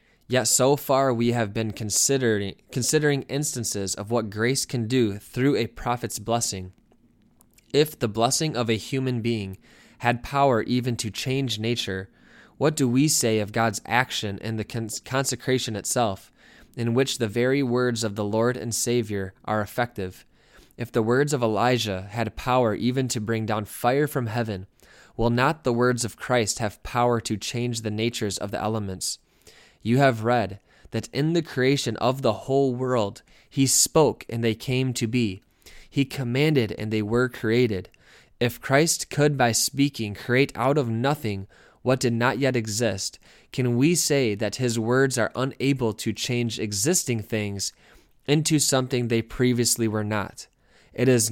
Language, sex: English, male